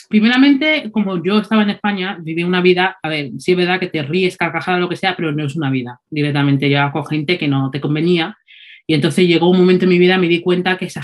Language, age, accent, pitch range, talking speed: Spanish, 20-39, Spanish, 155-190 Hz, 260 wpm